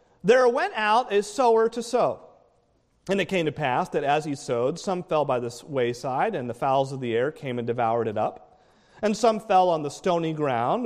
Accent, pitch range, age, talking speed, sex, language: American, 155-235 Hz, 40-59, 215 wpm, male, English